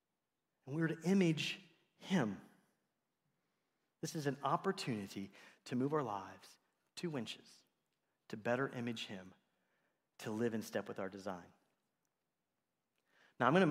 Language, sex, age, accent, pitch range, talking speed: English, male, 30-49, American, 120-160 Hz, 130 wpm